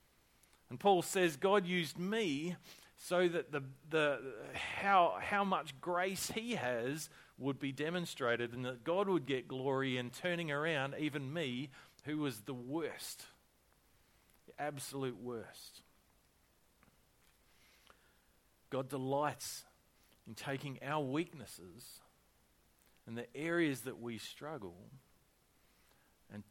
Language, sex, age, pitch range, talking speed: English, male, 40-59, 110-145 Hz, 115 wpm